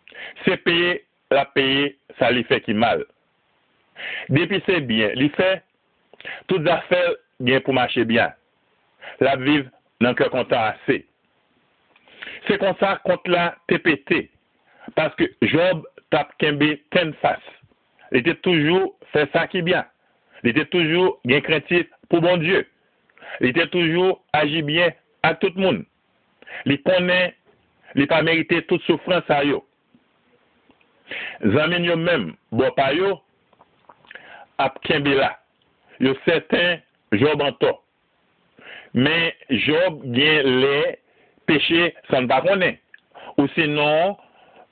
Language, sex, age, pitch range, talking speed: French, male, 60-79, 140-180 Hz, 125 wpm